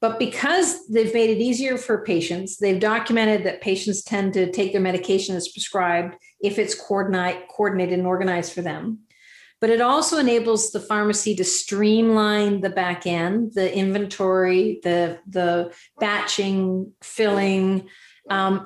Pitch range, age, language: 190-220 Hz, 50-69, English